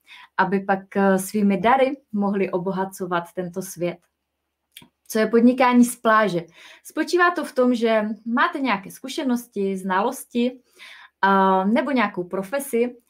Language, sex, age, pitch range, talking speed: Czech, female, 20-39, 185-235 Hz, 115 wpm